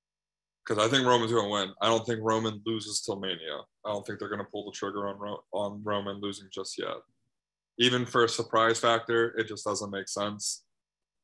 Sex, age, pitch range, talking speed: male, 20-39, 105-115 Hz, 215 wpm